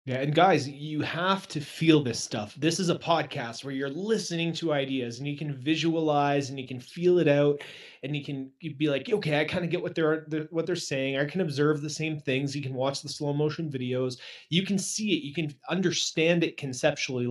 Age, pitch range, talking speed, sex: 30-49, 130-155 Hz, 230 wpm, male